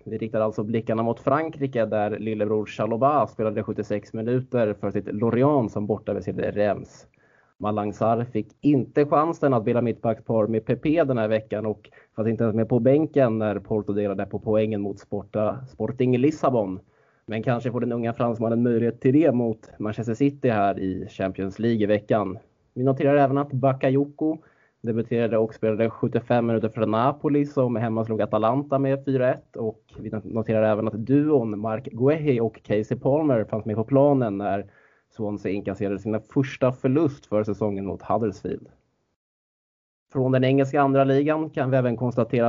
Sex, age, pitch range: male, 20-39, 110-135 Hz